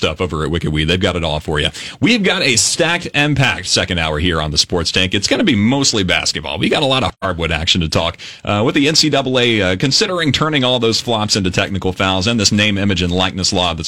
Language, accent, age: English, American, 30-49